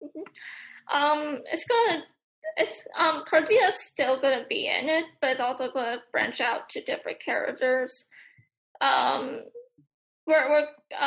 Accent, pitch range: American, 265-315 Hz